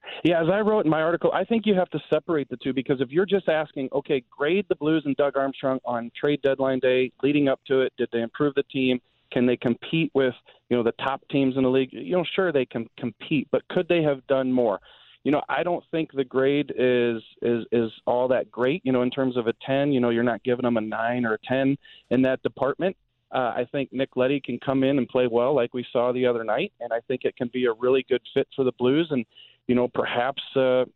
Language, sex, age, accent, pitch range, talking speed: English, male, 40-59, American, 125-145 Hz, 260 wpm